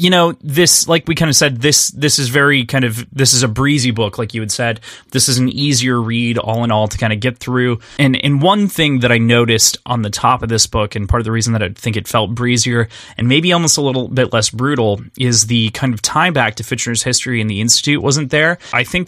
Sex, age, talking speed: male, 20-39, 265 wpm